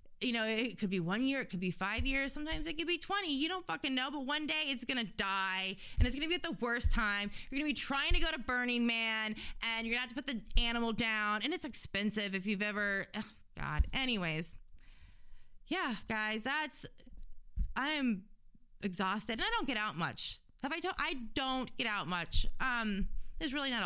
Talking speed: 225 wpm